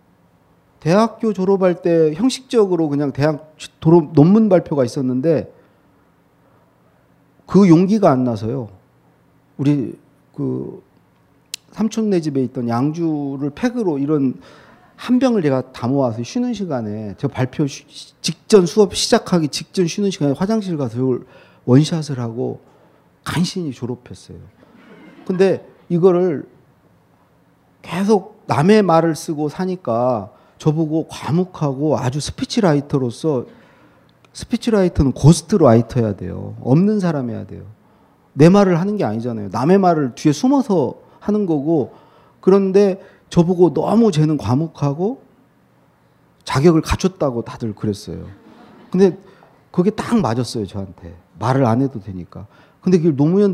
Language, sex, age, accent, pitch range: Korean, male, 40-59, native, 125-185 Hz